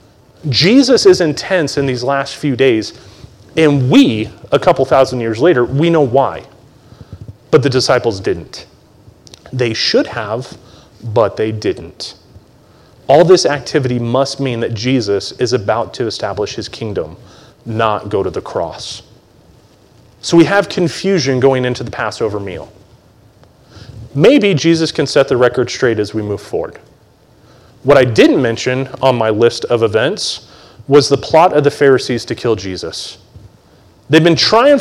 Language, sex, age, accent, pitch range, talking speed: English, male, 30-49, American, 115-155 Hz, 150 wpm